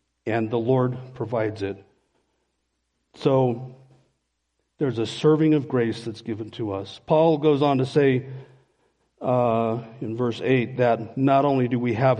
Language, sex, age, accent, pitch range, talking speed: English, male, 50-69, American, 125-160 Hz, 160 wpm